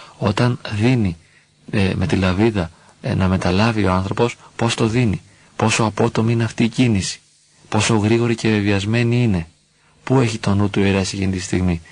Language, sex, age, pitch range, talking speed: Greek, male, 40-59, 100-115 Hz, 175 wpm